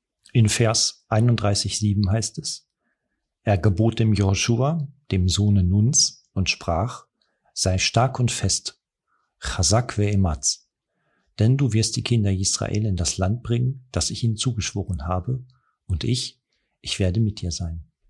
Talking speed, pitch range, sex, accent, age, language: 140 wpm, 95-120 Hz, male, German, 50-69, German